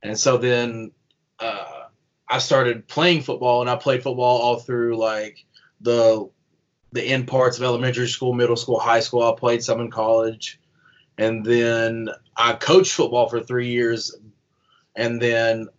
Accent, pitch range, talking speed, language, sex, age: American, 115-135 Hz, 155 wpm, English, male, 20-39